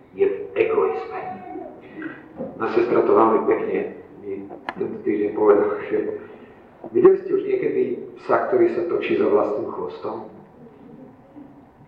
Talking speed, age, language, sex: 115 wpm, 40-59, Slovak, male